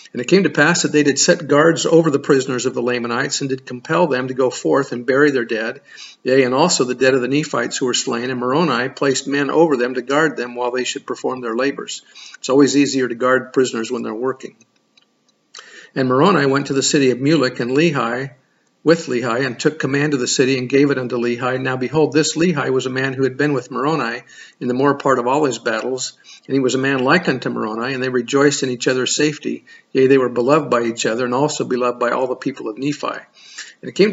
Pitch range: 125-145 Hz